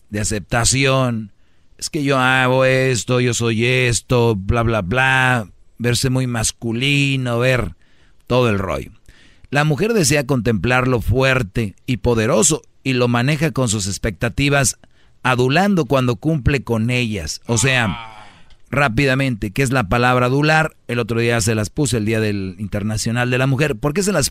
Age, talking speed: 40-59, 155 wpm